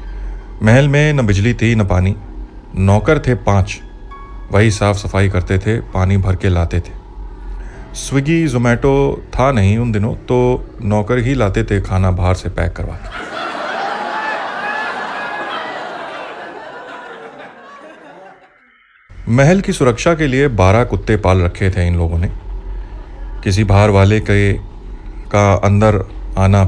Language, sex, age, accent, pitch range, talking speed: Hindi, male, 30-49, native, 95-115 Hz, 125 wpm